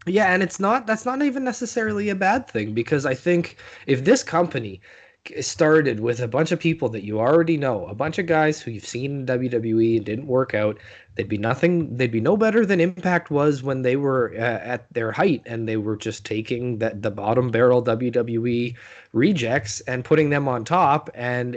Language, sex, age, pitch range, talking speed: English, male, 20-39, 110-155 Hz, 205 wpm